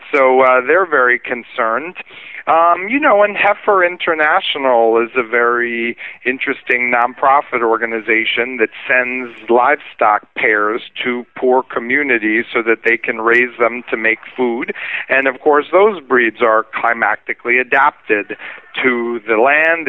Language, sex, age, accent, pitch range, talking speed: English, male, 40-59, American, 120-150 Hz, 135 wpm